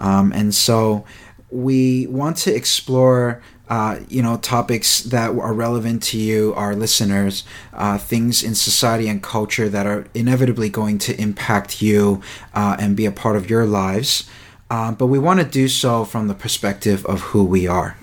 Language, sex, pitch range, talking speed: English, male, 100-125 Hz, 175 wpm